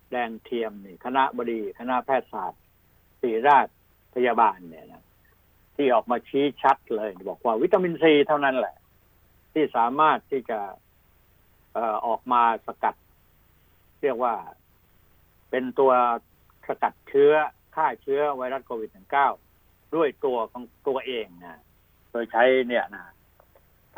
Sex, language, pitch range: male, Thai, 110-130 Hz